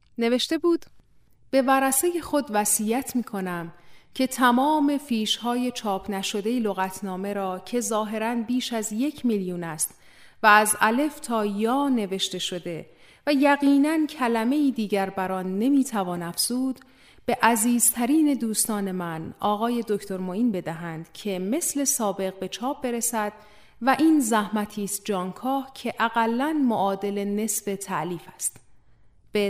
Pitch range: 195-265 Hz